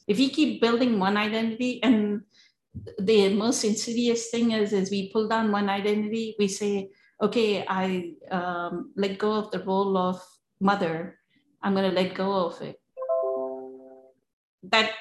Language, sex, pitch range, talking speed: English, female, 185-215 Hz, 150 wpm